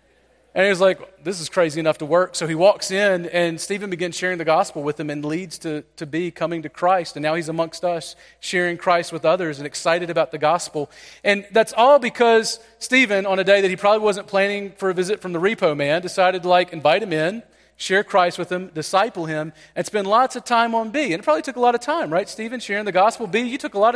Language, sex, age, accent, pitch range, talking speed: English, male, 40-59, American, 150-195 Hz, 255 wpm